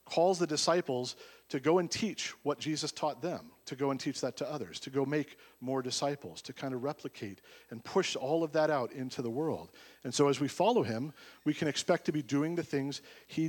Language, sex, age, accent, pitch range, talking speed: English, male, 40-59, American, 125-155 Hz, 225 wpm